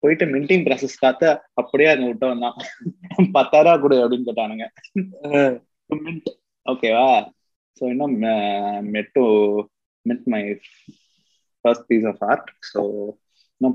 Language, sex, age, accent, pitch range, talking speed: Tamil, male, 20-39, native, 115-145 Hz, 75 wpm